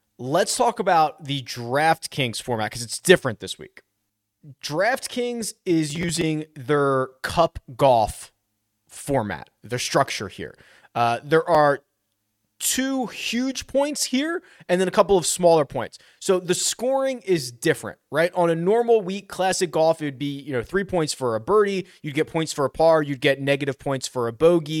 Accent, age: American, 30-49